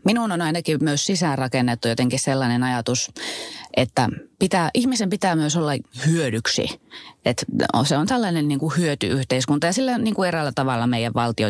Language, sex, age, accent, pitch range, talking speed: Finnish, female, 30-49, native, 130-175 Hz, 150 wpm